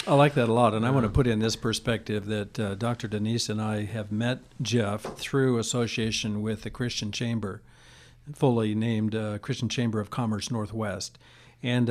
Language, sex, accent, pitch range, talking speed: English, male, American, 110-130 Hz, 185 wpm